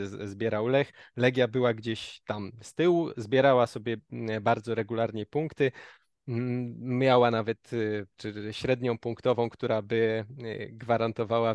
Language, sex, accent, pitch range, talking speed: Polish, male, native, 115-135 Hz, 110 wpm